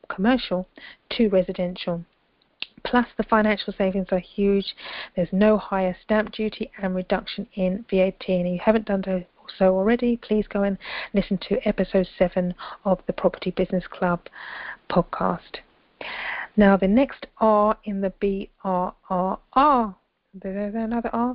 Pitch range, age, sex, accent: 190-220 Hz, 40-59, female, British